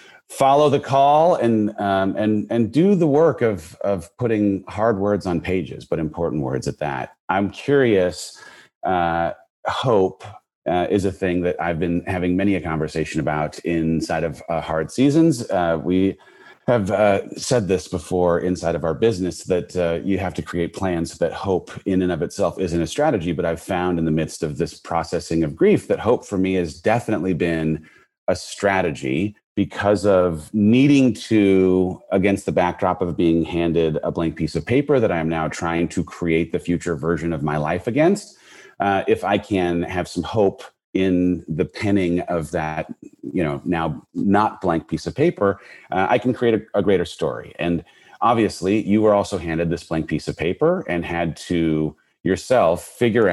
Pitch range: 85-105 Hz